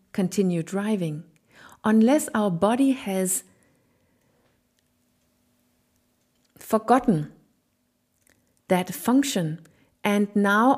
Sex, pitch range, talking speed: female, 180-225 Hz, 60 wpm